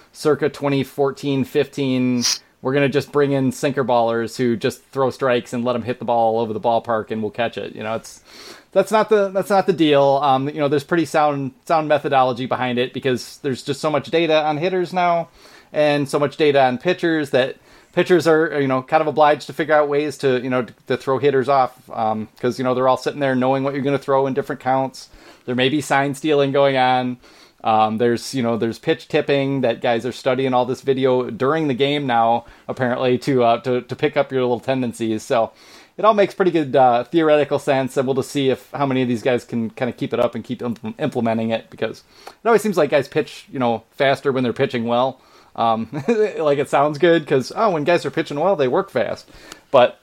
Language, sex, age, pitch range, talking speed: English, male, 30-49, 125-150 Hz, 230 wpm